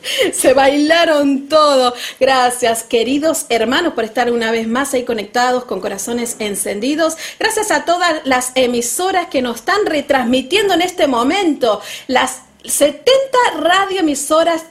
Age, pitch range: 40-59, 250-335 Hz